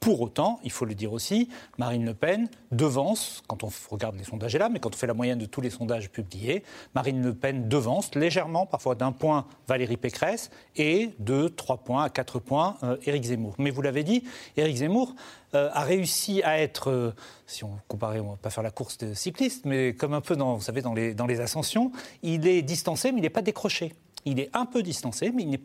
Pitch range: 130-185 Hz